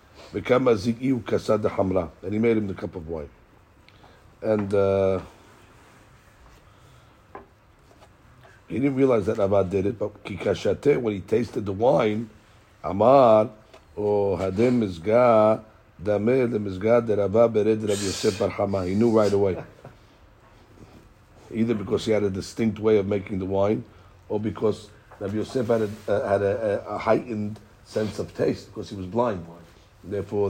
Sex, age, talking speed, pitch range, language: male, 50-69, 110 wpm, 100-115 Hz, English